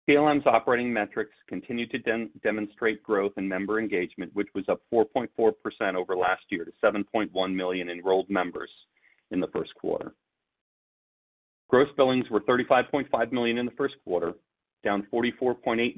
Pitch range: 95-120 Hz